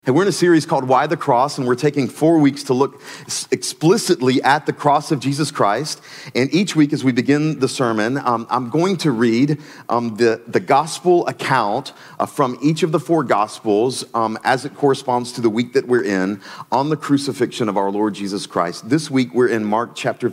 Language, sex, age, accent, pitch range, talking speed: English, male, 40-59, American, 125-160 Hz, 215 wpm